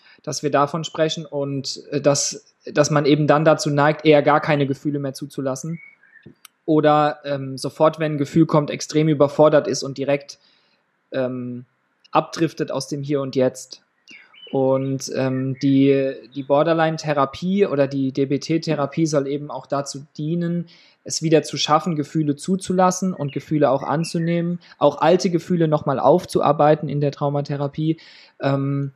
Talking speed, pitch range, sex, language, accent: 145 wpm, 140-155 Hz, male, German, German